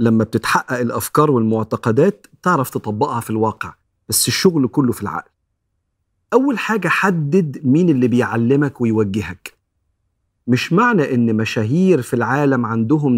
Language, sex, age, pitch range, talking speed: Arabic, male, 40-59, 110-165 Hz, 125 wpm